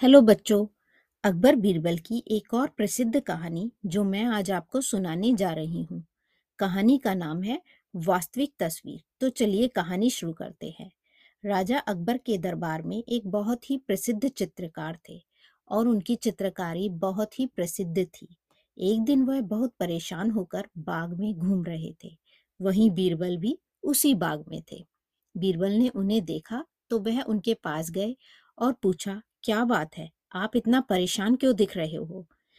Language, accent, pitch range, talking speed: Hindi, native, 185-235 Hz, 160 wpm